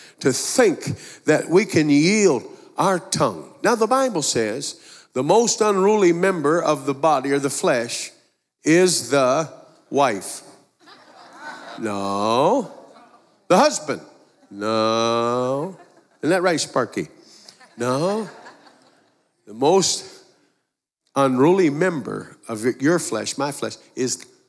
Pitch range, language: 140-175 Hz, English